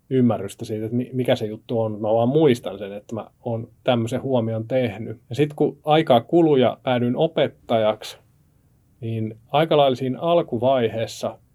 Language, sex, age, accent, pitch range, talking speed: Finnish, male, 30-49, native, 110-130 Hz, 150 wpm